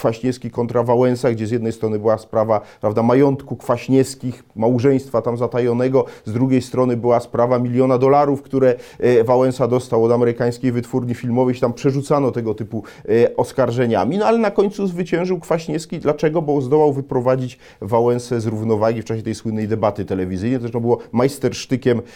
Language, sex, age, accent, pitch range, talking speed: Polish, male, 40-59, native, 115-140 Hz, 160 wpm